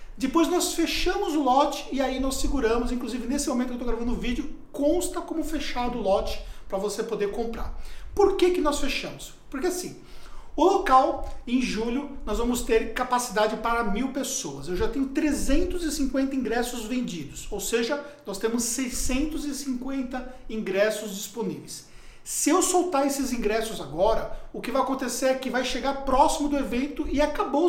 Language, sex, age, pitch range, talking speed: Portuguese, male, 50-69, 240-295 Hz, 165 wpm